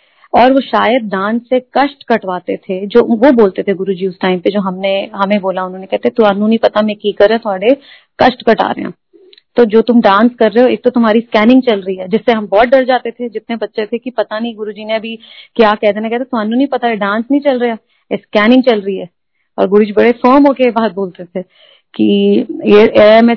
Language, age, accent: Hindi, 30-49, native